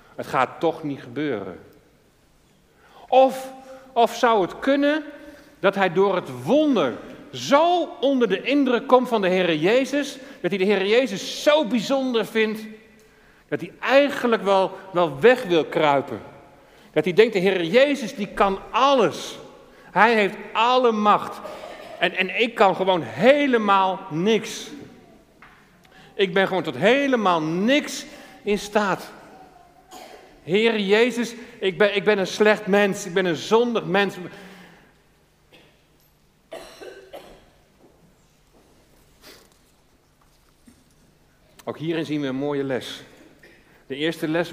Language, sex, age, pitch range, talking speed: Dutch, male, 50-69, 160-235 Hz, 125 wpm